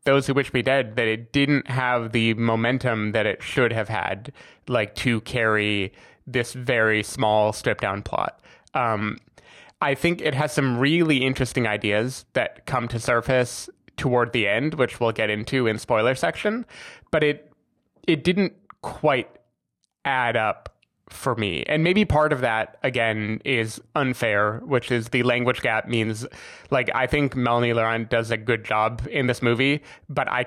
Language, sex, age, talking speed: English, male, 20-39, 165 wpm